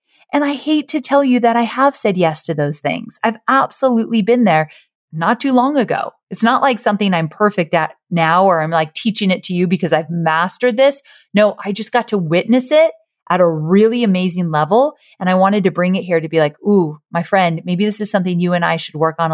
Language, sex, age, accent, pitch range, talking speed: English, female, 30-49, American, 170-240 Hz, 235 wpm